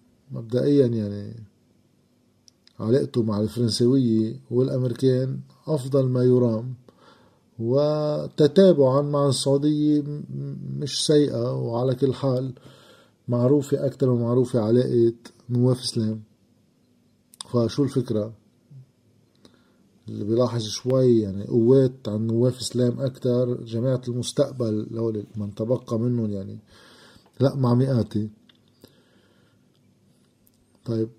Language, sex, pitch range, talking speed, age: Arabic, male, 110-135 Hz, 85 wpm, 50-69